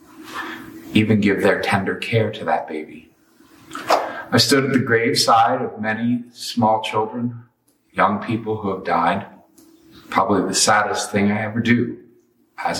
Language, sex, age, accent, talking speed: English, male, 50-69, American, 140 wpm